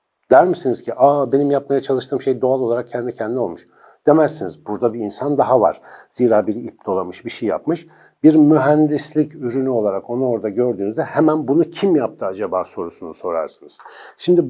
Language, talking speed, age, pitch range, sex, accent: Turkish, 170 wpm, 60-79, 115-155 Hz, male, native